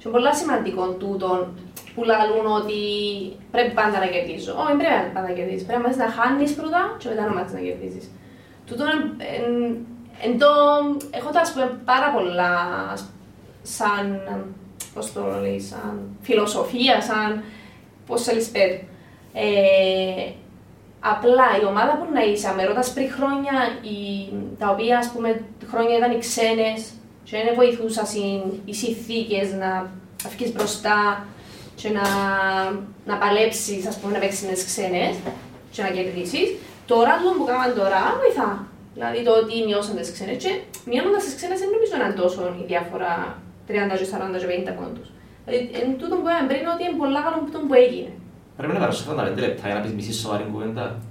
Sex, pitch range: female, 185-245 Hz